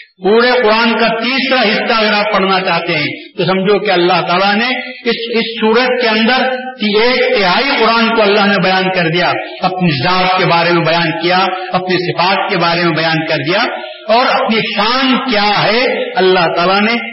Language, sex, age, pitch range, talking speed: Urdu, male, 50-69, 185-245 Hz, 180 wpm